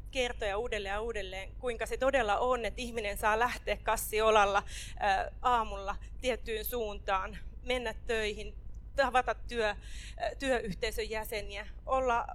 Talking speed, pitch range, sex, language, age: 105 wpm, 205-250 Hz, female, Finnish, 30-49